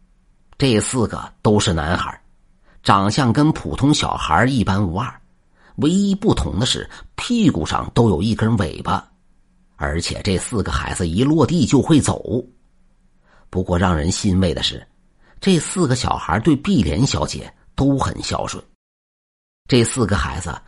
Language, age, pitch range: Chinese, 50-69, 85-110 Hz